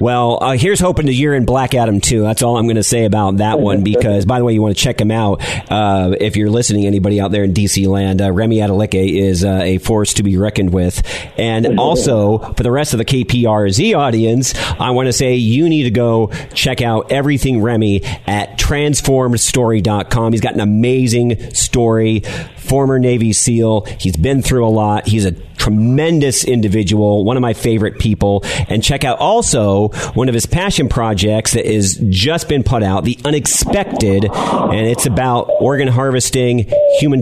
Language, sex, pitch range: English, male, 105-130 Hz